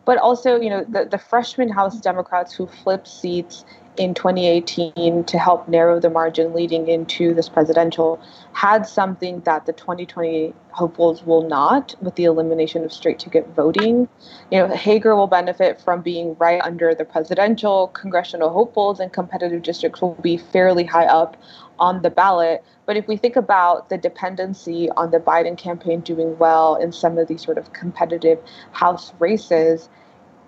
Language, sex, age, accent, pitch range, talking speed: English, female, 20-39, American, 170-205 Hz, 165 wpm